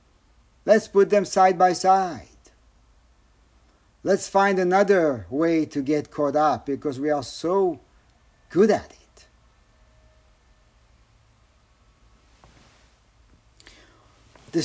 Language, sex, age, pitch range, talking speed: English, male, 50-69, 120-175 Hz, 90 wpm